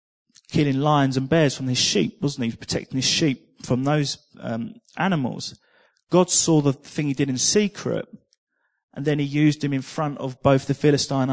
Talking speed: 185 wpm